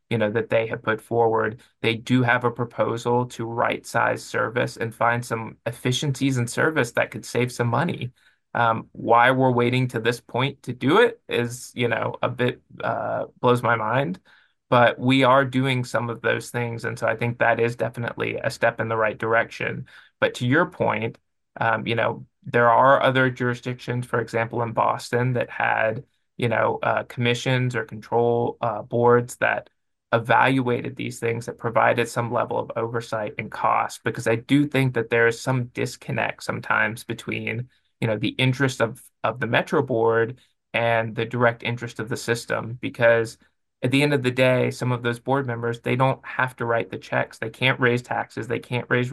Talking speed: 190 wpm